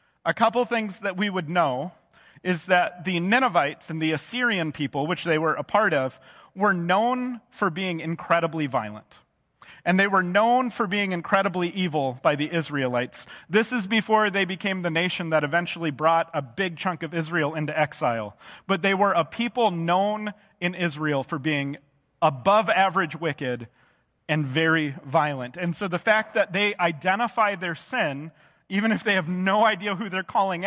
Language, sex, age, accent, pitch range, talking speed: English, male, 30-49, American, 150-195 Hz, 175 wpm